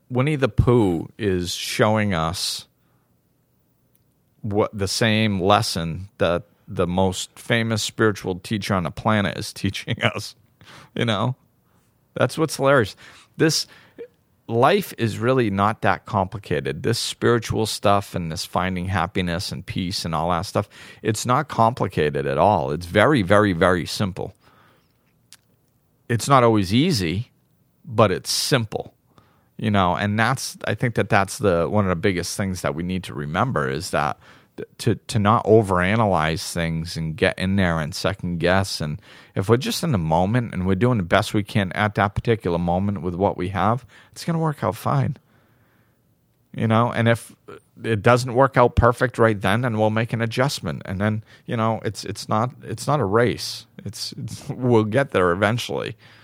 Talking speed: 170 wpm